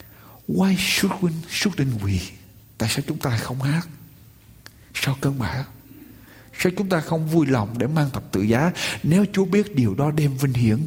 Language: Vietnamese